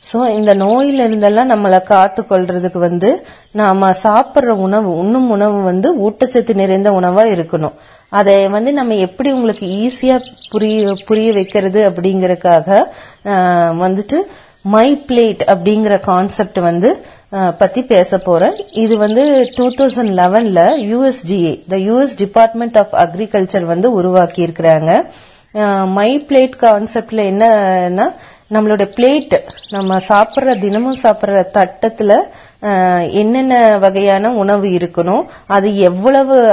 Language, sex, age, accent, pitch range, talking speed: Tamil, female, 30-49, native, 190-240 Hz, 95 wpm